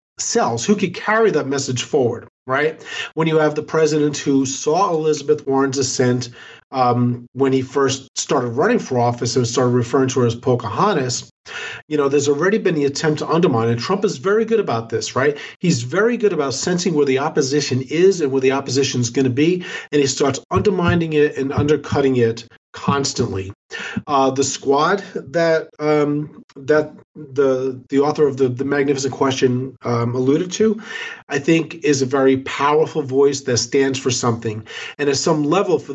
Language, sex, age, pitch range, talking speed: English, male, 40-59, 130-155 Hz, 180 wpm